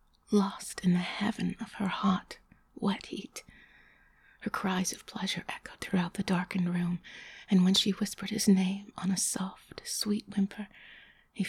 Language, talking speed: English, 155 wpm